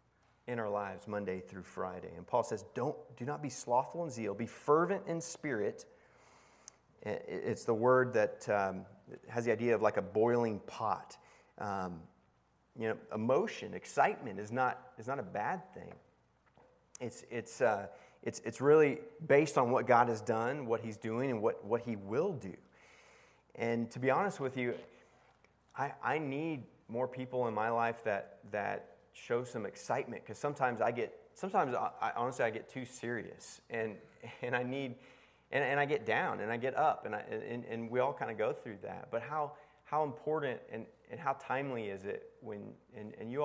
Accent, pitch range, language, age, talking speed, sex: American, 105-140 Hz, English, 30-49, 185 wpm, male